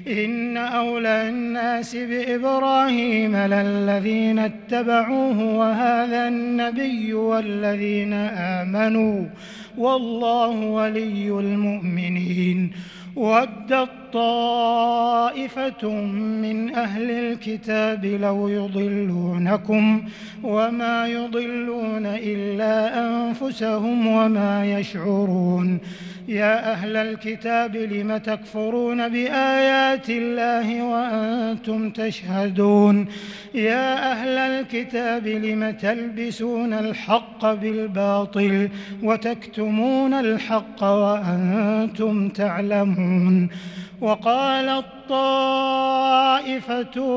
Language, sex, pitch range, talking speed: Arabic, male, 200-235 Hz, 60 wpm